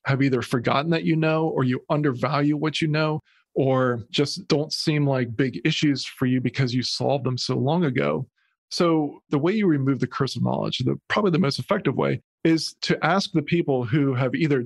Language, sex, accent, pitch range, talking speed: English, male, American, 130-150 Hz, 210 wpm